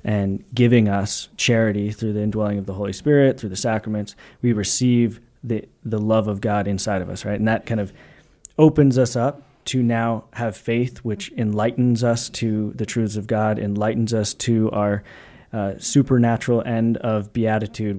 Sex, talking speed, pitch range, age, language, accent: male, 175 wpm, 105-125 Hz, 20-39, English, American